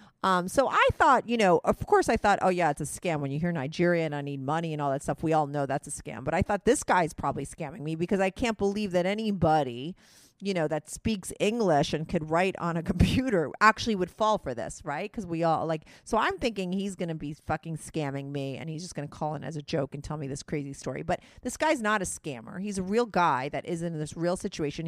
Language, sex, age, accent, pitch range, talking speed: English, female, 40-59, American, 150-195 Hz, 265 wpm